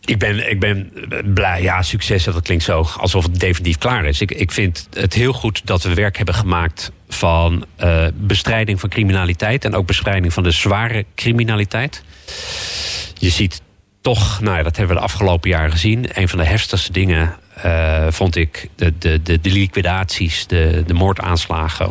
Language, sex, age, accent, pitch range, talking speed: Dutch, male, 40-59, Dutch, 85-100 Hz, 180 wpm